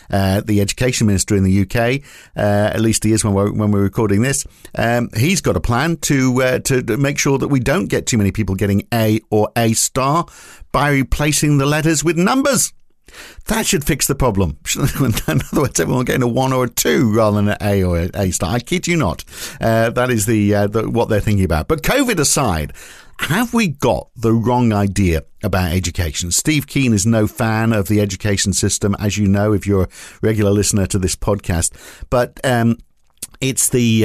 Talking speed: 210 wpm